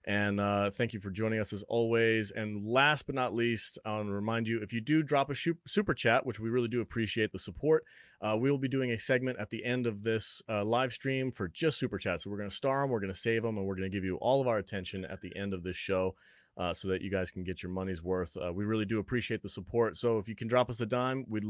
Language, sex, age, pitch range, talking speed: English, male, 30-49, 100-135 Hz, 295 wpm